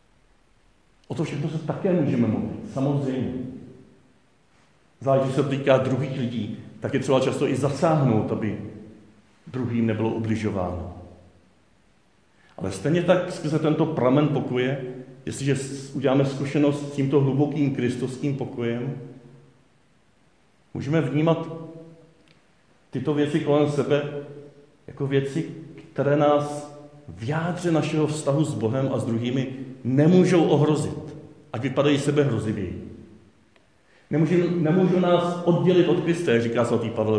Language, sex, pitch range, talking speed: Czech, male, 110-150 Hz, 115 wpm